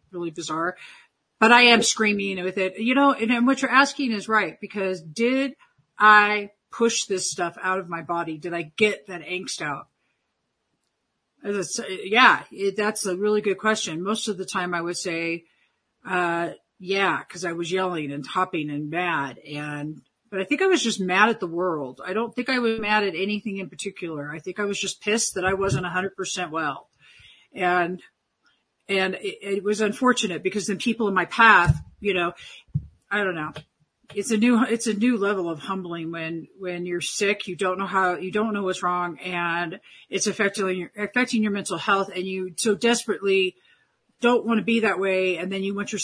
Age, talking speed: 50-69, 200 wpm